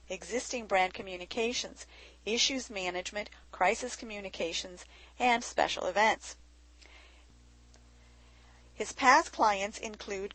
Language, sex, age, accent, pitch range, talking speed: English, female, 40-59, American, 180-235 Hz, 80 wpm